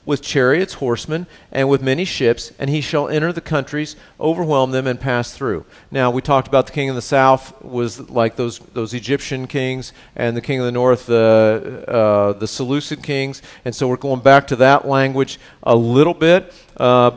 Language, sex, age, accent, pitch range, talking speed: English, male, 50-69, American, 115-140 Hz, 195 wpm